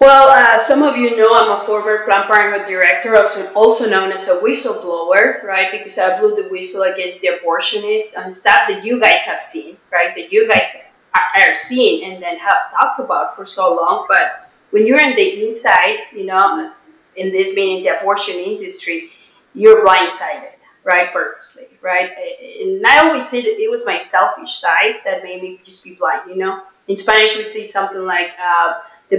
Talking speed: 190 wpm